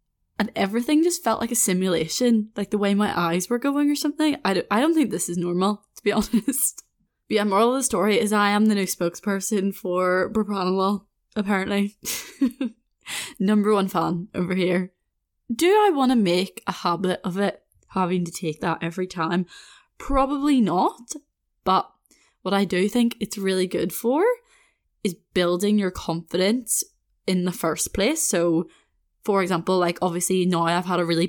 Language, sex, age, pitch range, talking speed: English, female, 10-29, 175-230 Hz, 175 wpm